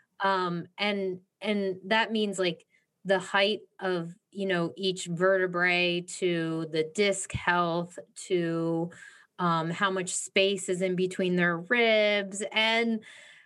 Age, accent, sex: 30-49, American, female